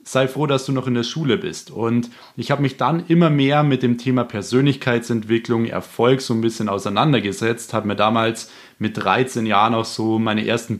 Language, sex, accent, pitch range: German, male, German, 110-130 Hz